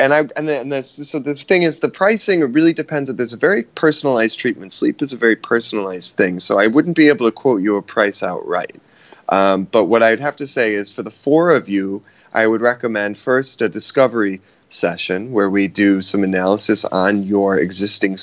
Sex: male